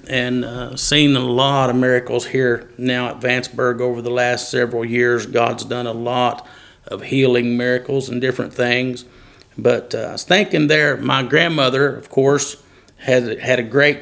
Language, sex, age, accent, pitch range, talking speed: English, male, 50-69, American, 120-130 Hz, 170 wpm